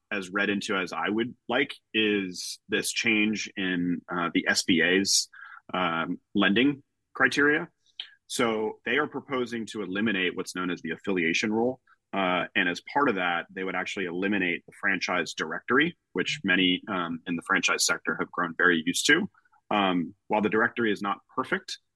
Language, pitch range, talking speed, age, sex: English, 90-110 Hz, 165 wpm, 30-49, male